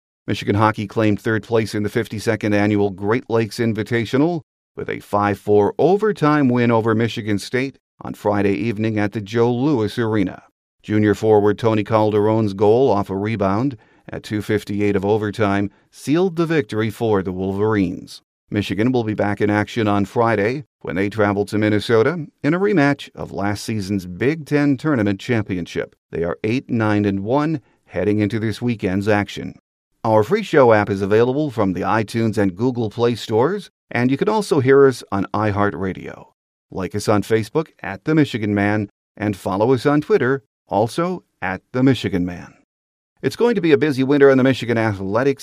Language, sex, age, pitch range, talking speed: English, male, 50-69, 105-125 Hz, 170 wpm